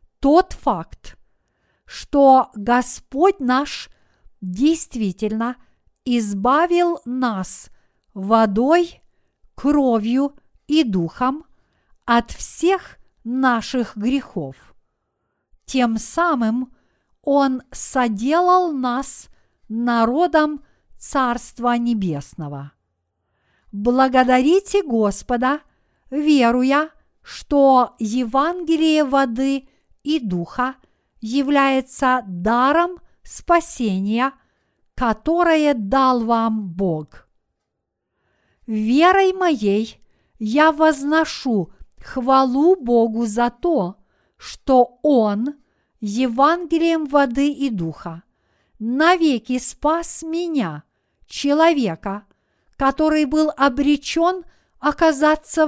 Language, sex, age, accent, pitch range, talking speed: Russian, female, 50-69, native, 225-300 Hz, 65 wpm